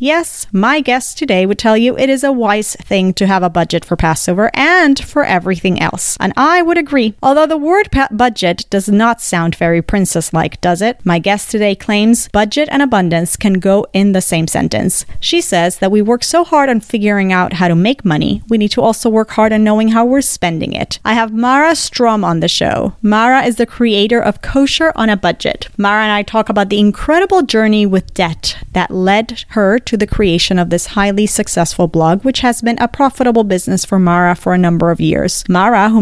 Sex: female